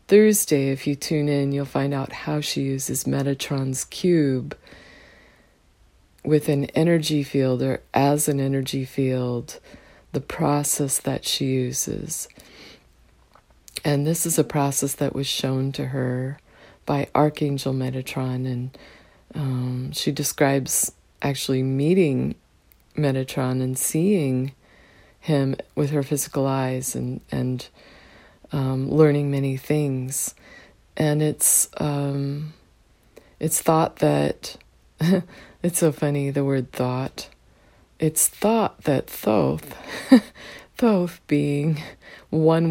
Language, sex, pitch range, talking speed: English, female, 130-150 Hz, 110 wpm